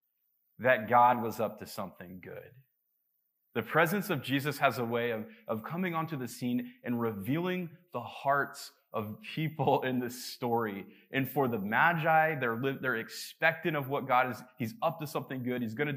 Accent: American